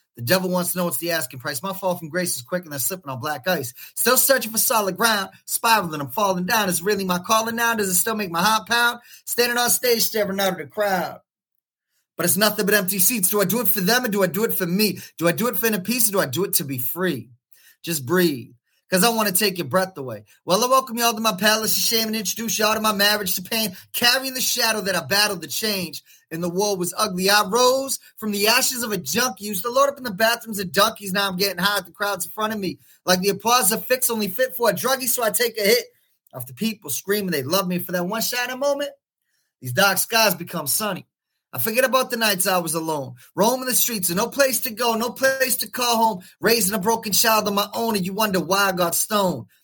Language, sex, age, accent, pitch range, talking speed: English, male, 30-49, American, 180-230 Hz, 265 wpm